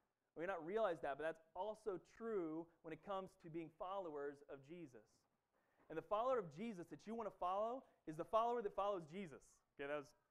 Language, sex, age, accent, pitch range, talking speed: English, male, 30-49, American, 165-220 Hz, 210 wpm